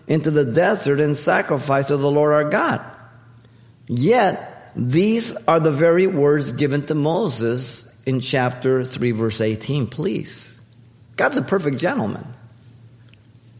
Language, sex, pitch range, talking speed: English, male, 115-150 Hz, 130 wpm